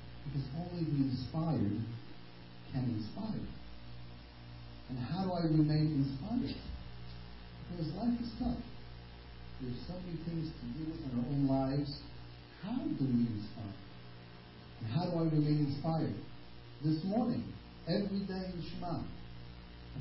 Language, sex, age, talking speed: English, male, 40-59, 125 wpm